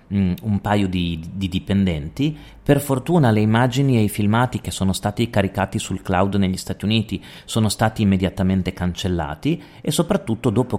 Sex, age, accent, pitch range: male, 30-49, native, 95-120 Hz